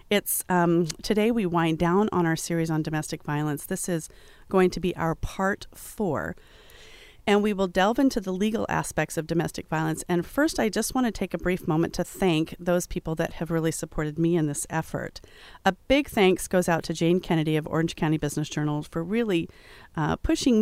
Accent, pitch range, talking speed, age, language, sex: American, 160-205 Hz, 205 wpm, 40-59, English, female